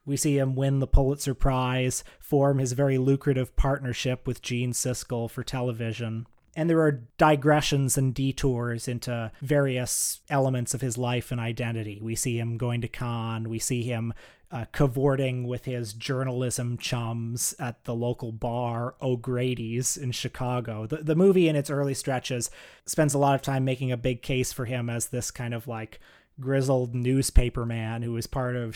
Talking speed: 175 wpm